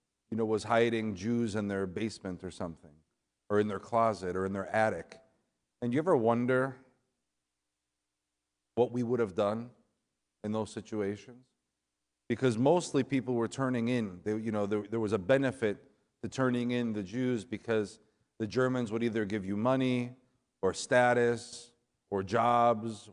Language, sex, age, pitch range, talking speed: English, male, 40-59, 95-125 Hz, 155 wpm